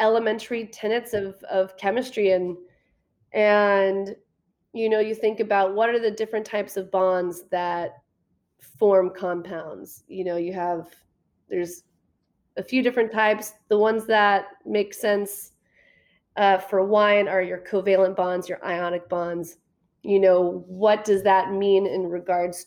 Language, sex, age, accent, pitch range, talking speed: English, female, 30-49, American, 185-215 Hz, 145 wpm